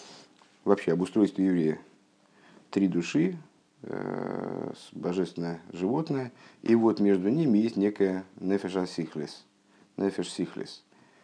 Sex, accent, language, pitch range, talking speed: male, native, Russian, 85-95 Hz, 95 wpm